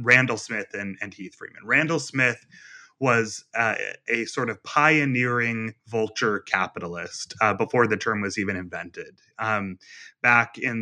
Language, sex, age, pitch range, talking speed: English, male, 30-49, 110-130 Hz, 145 wpm